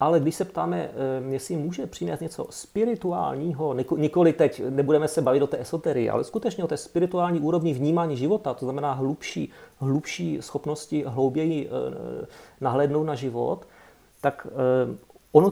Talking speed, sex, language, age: 140 wpm, male, Czech, 30-49